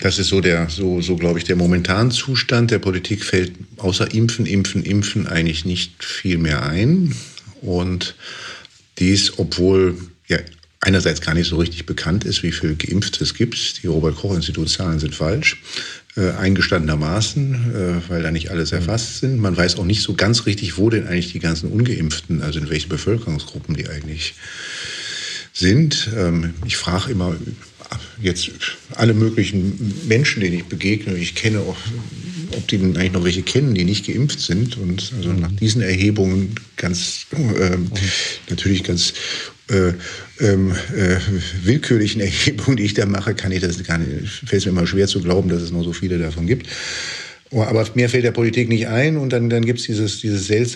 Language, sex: German, male